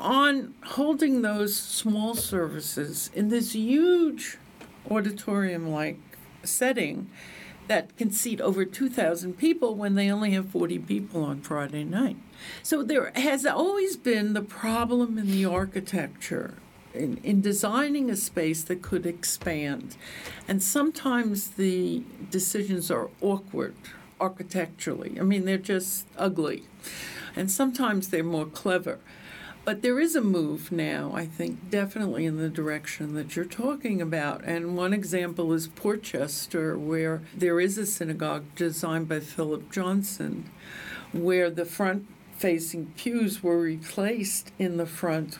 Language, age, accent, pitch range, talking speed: English, 60-79, American, 165-210 Hz, 130 wpm